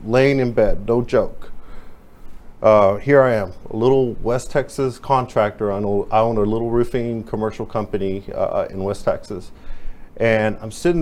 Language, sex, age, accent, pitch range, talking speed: English, male, 40-59, American, 105-135 Hz, 165 wpm